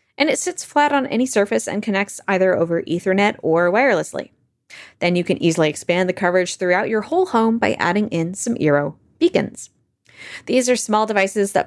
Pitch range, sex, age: 165-220 Hz, female, 20-39